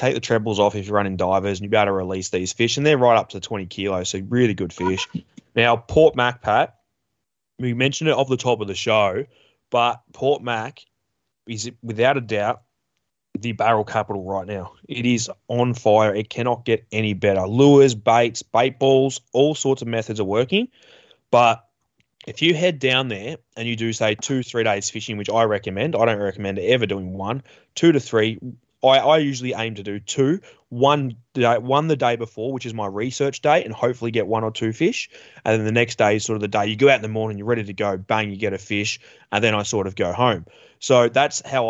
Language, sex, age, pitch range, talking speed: English, male, 20-39, 105-125 Hz, 225 wpm